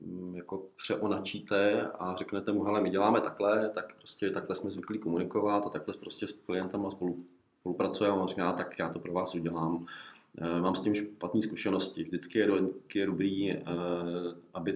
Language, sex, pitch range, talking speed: Czech, male, 85-100 Hz, 165 wpm